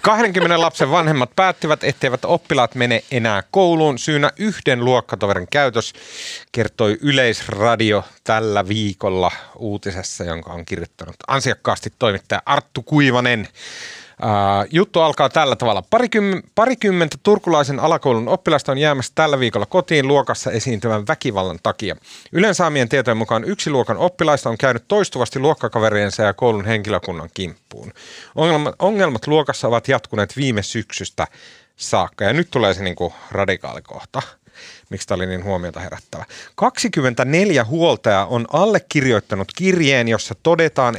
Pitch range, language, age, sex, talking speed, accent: 105-155 Hz, Finnish, 30-49, male, 120 wpm, native